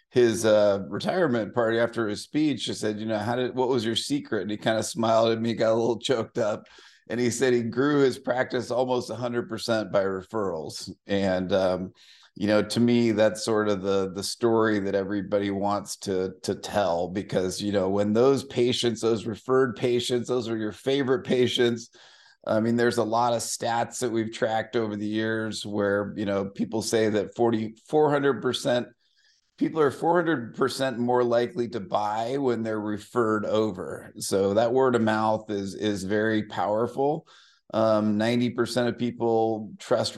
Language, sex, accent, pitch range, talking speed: English, male, American, 105-120 Hz, 175 wpm